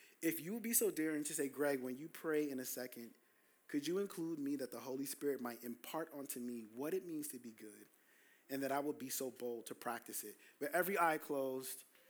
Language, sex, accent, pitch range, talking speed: English, male, American, 130-155 Hz, 235 wpm